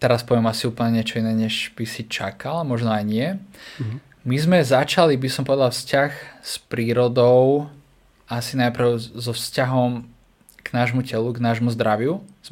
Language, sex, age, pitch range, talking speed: Slovak, male, 20-39, 115-135 Hz, 160 wpm